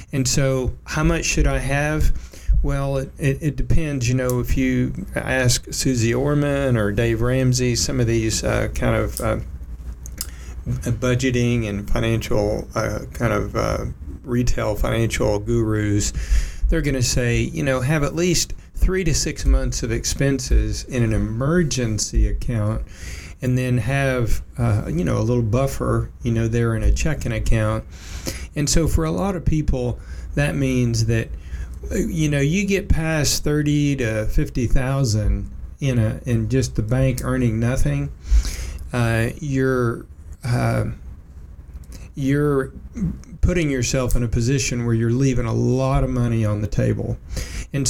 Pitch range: 110-135 Hz